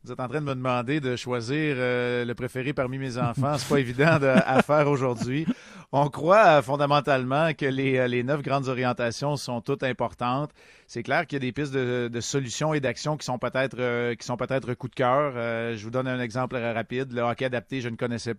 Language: French